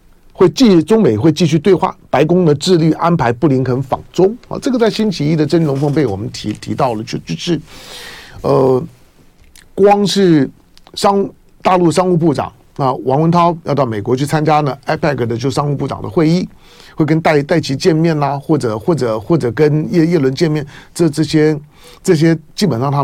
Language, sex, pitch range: Chinese, male, 120-160 Hz